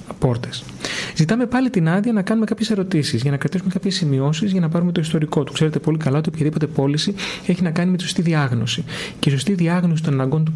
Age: 30-49